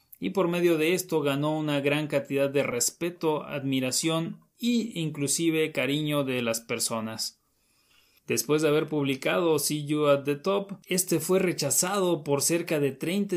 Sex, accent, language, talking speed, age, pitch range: male, Mexican, Spanish, 155 wpm, 30-49, 140-175 Hz